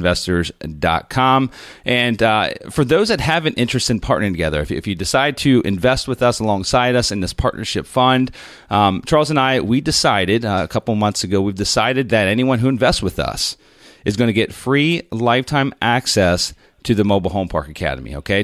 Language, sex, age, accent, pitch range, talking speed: English, male, 30-49, American, 95-130 Hz, 190 wpm